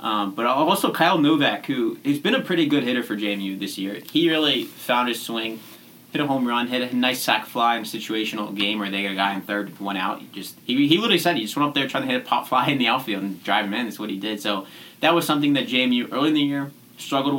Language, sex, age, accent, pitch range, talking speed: English, male, 20-39, American, 105-140 Hz, 285 wpm